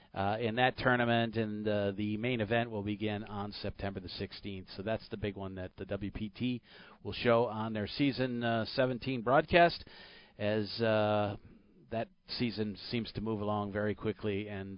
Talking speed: 170 wpm